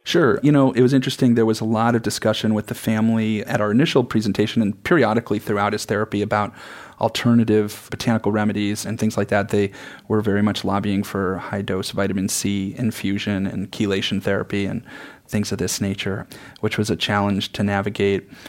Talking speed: 185 wpm